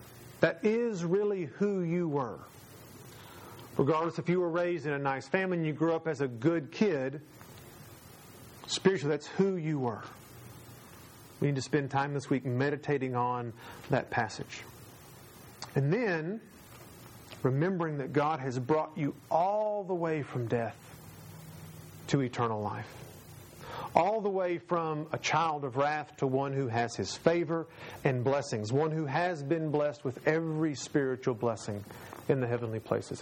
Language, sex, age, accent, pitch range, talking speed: English, male, 40-59, American, 120-160 Hz, 150 wpm